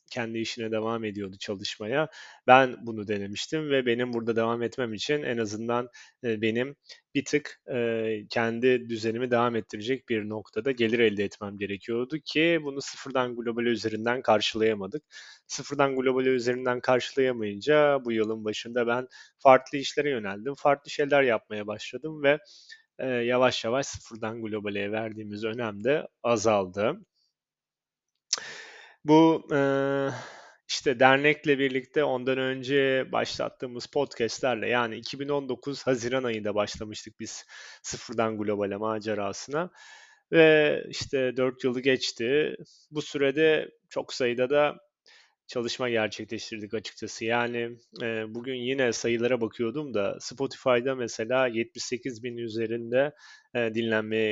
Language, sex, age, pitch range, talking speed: Turkish, male, 30-49, 110-135 Hz, 110 wpm